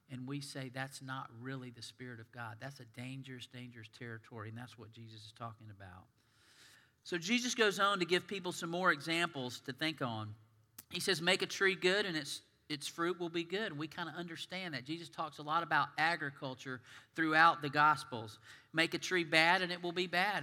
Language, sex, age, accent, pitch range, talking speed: English, male, 40-59, American, 125-165 Hz, 210 wpm